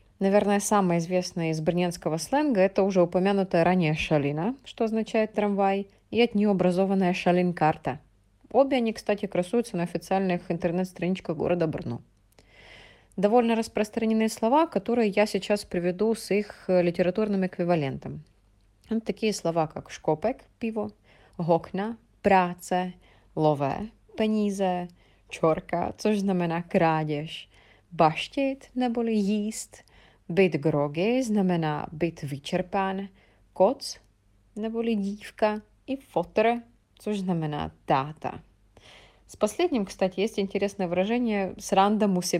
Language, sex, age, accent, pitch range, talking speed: Russian, female, 30-49, native, 170-210 Hz, 105 wpm